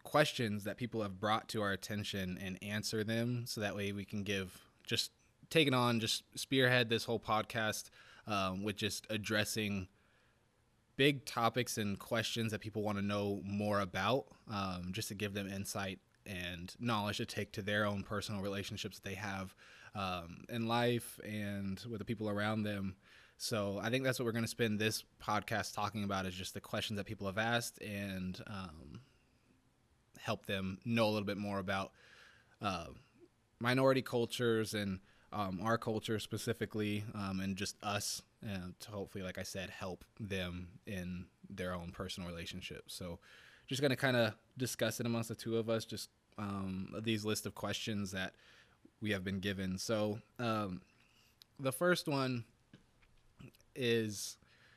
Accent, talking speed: American, 170 wpm